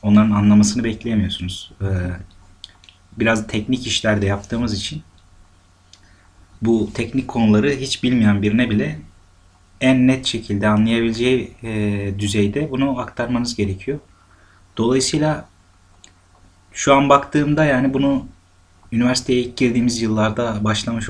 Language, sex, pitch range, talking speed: Turkish, male, 95-120 Hz, 95 wpm